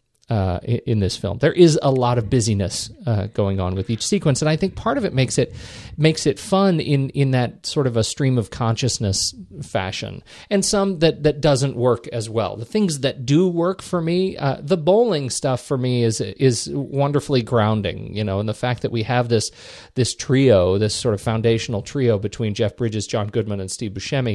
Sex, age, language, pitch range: male, 40-59, English, 110-140 Hz